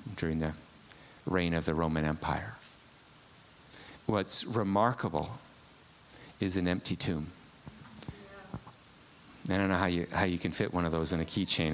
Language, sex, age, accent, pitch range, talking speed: English, male, 40-59, American, 85-105 Hz, 145 wpm